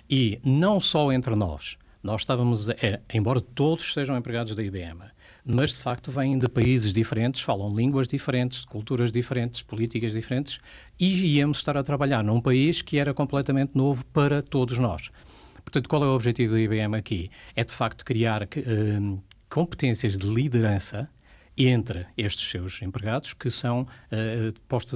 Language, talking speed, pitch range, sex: Portuguese, 150 wpm, 105-130 Hz, male